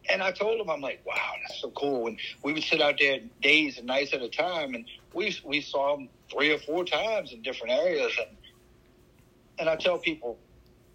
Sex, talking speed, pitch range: male, 215 wpm, 120-150 Hz